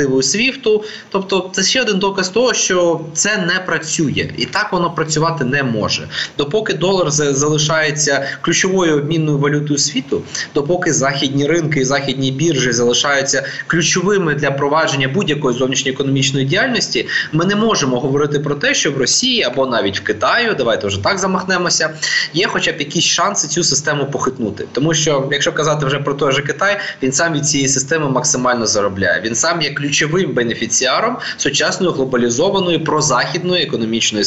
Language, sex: Ukrainian, male